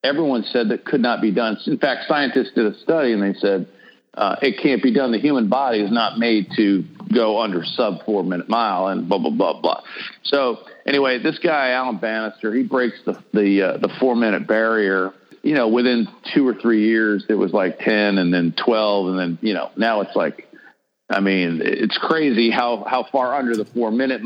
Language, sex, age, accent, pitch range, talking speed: English, male, 50-69, American, 105-135 Hz, 205 wpm